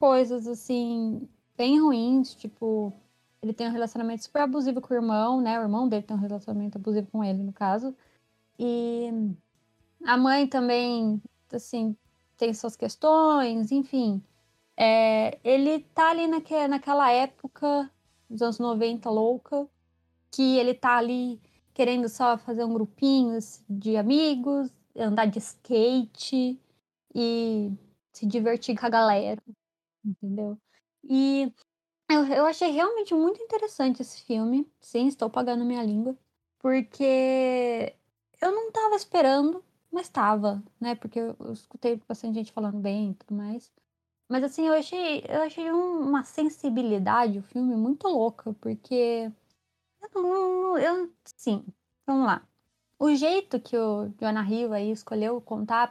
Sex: female